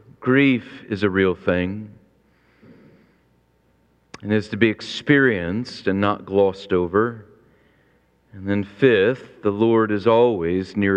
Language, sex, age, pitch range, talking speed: English, male, 40-59, 105-140 Hz, 120 wpm